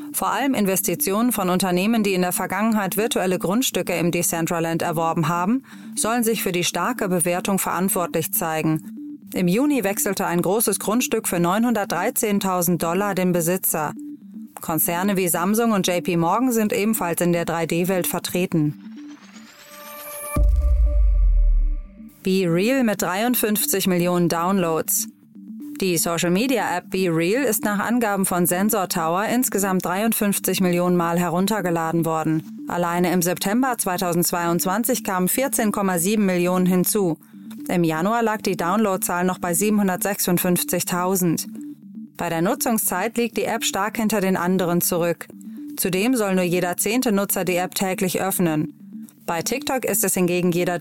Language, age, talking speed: German, 30-49, 130 wpm